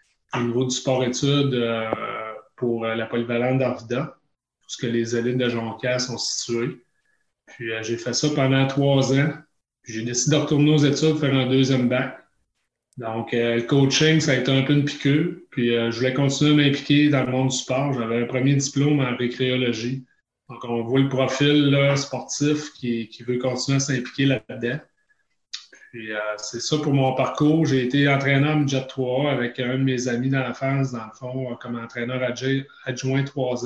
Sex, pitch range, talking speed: male, 120-140 Hz, 195 wpm